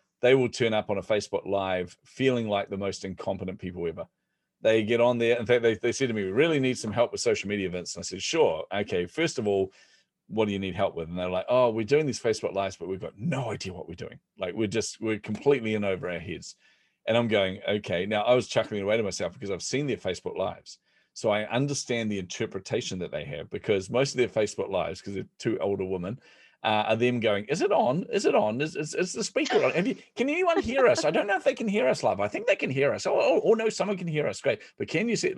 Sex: male